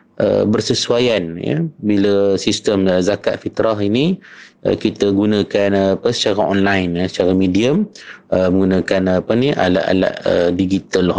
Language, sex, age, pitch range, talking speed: Malay, male, 30-49, 95-115 Hz, 145 wpm